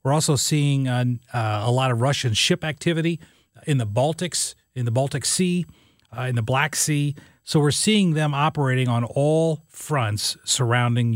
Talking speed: 170 wpm